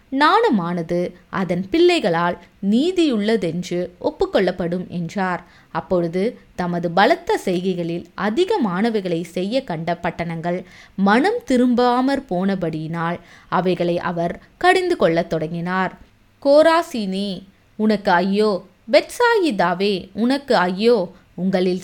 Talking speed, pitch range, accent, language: 80 wpm, 180-250 Hz, native, Tamil